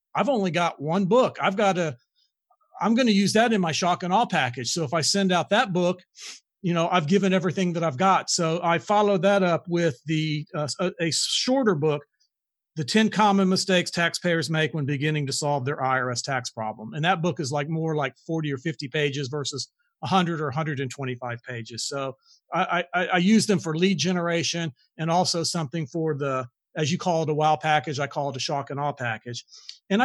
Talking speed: 210 wpm